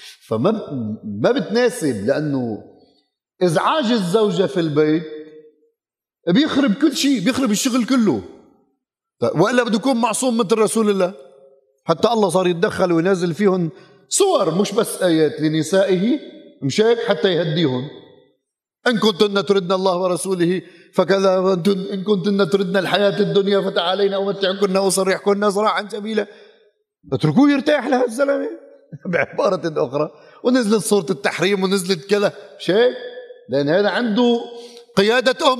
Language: Arabic